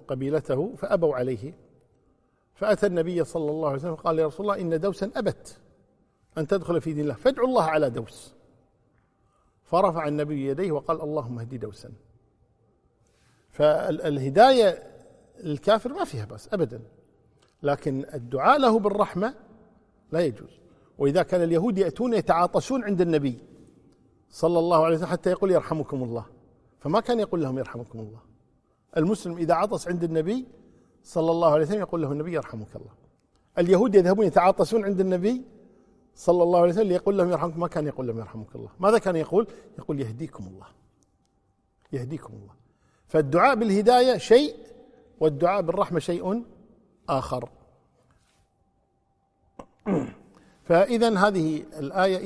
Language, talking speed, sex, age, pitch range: Arabic, 135 wpm, male, 50-69, 140-200 Hz